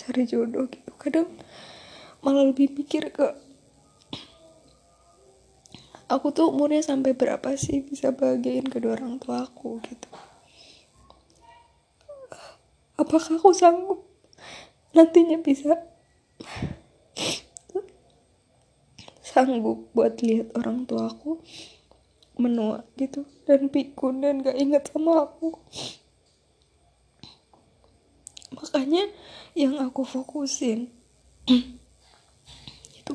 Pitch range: 240-290 Hz